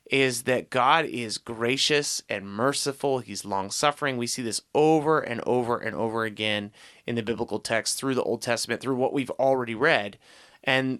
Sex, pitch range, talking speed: male, 110-140 Hz, 175 wpm